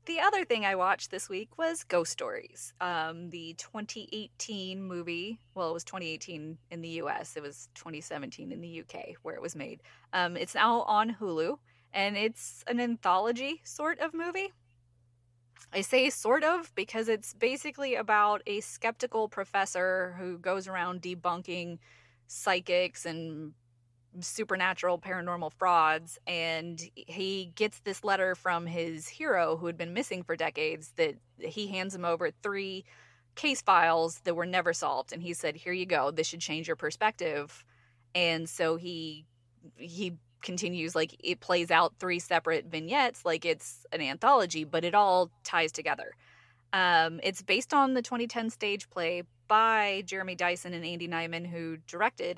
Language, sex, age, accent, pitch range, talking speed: English, female, 20-39, American, 165-210 Hz, 155 wpm